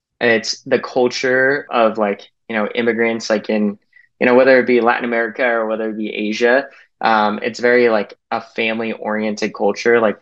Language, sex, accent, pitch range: English, male, American, 110-125 Hz